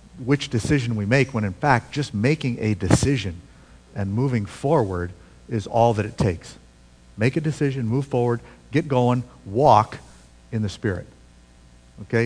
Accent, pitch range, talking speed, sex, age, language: American, 85-125 Hz, 150 wpm, male, 50-69, English